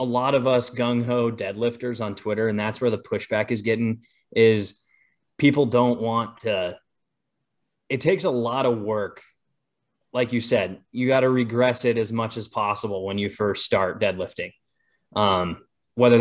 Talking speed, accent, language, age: 170 wpm, American, English, 20-39